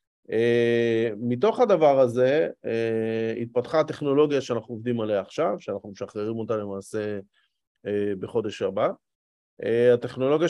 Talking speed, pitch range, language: 115 wpm, 115-140 Hz, Hebrew